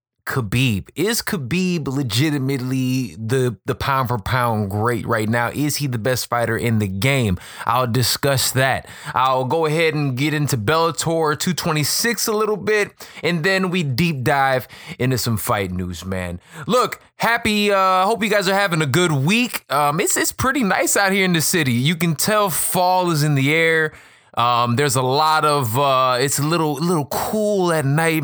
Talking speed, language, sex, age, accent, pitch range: 185 wpm, English, male, 20-39, American, 125-165 Hz